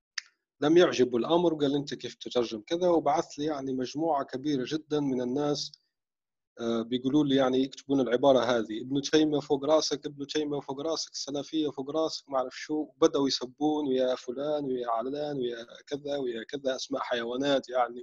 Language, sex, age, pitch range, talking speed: Arabic, male, 30-49, 125-165 Hz, 165 wpm